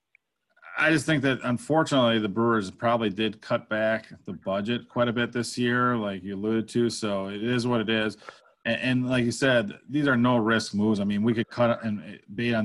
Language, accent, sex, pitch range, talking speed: English, American, male, 100-120 Hz, 220 wpm